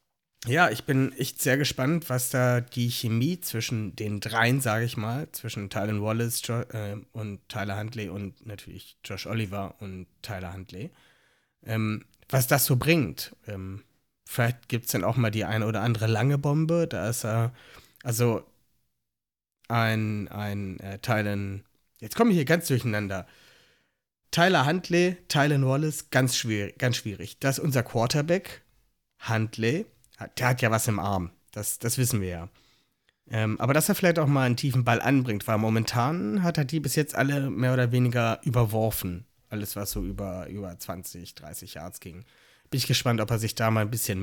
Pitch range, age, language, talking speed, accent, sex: 105-135 Hz, 30-49, German, 175 wpm, German, male